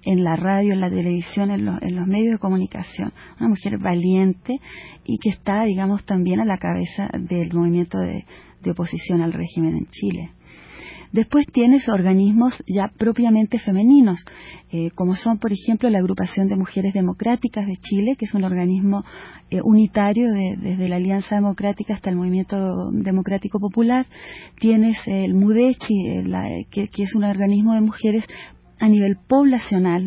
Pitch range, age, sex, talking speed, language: 185-220 Hz, 30-49, female, 160 wpm, Spanish